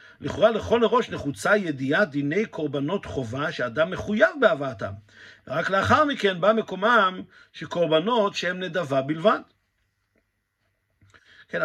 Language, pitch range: Hebrew, 135-200 Hz